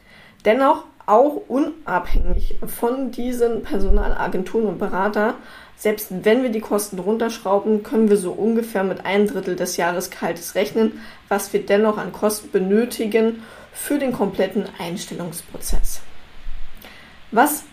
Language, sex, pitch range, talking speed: German, female, 185-230 Hz, 120 wpm